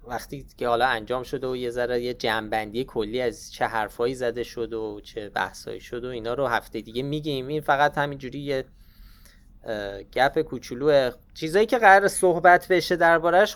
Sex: male